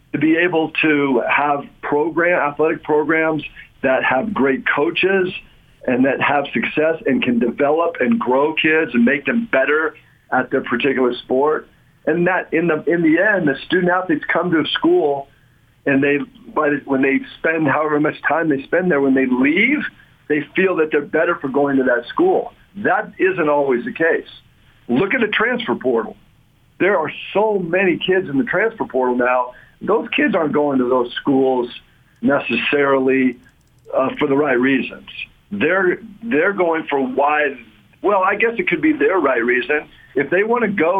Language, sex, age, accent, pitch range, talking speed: English, male, 50-69, American, 135-180 Hz, 175 wpm